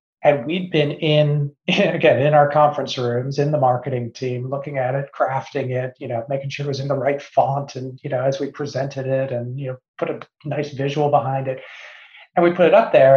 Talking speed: 230 wpm